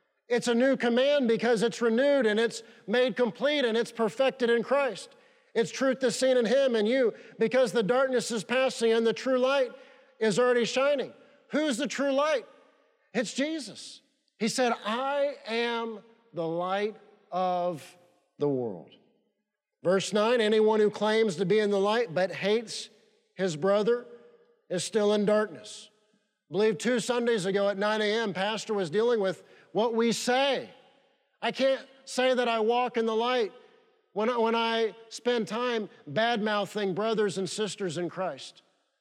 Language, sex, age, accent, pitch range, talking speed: English, male, 50-69, American, 210-245 Hz, 160 wpm